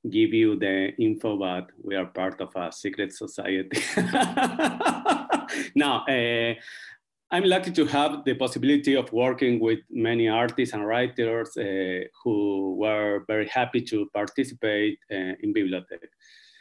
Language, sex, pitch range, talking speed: English, male, 100-135 Hz, 135 wpm